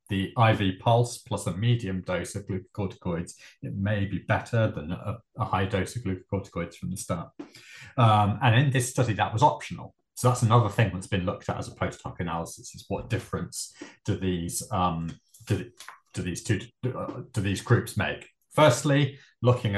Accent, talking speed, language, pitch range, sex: British, 185 wpm, English, 95-120 Hz, male